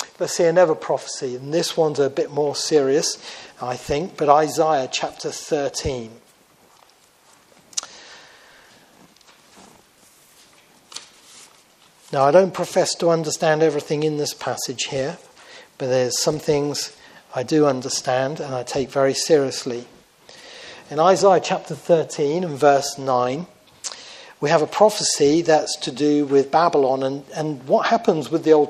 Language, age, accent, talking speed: English, 40-59, British, 130 wpm